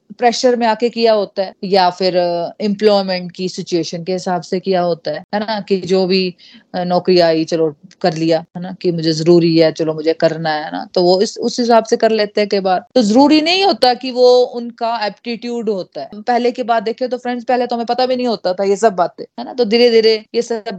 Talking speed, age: 235 wpm, 30-49